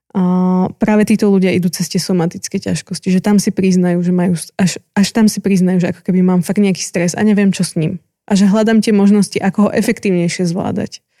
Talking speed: 220 wpm